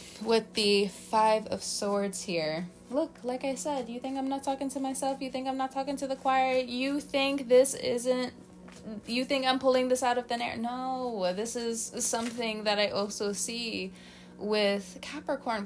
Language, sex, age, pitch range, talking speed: English, female, 20-39, 175-245 Hz, 185 wpm